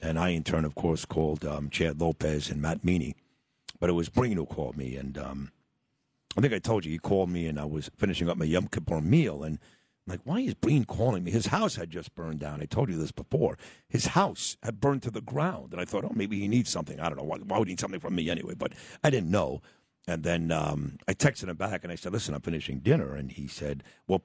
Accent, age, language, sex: American, 60-79, English, male